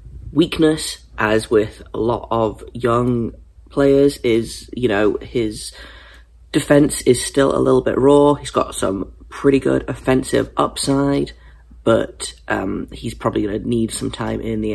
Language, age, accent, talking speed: English, 30-49, British, 145 wpm